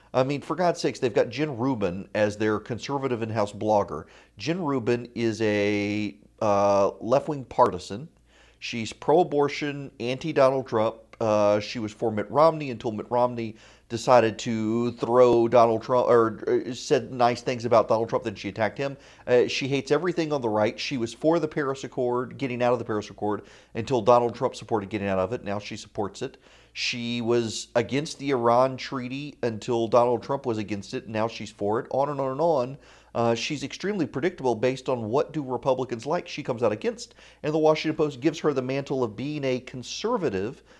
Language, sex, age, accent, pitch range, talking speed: English, male, 40-59, American, 110-140 Hz, 190 wpm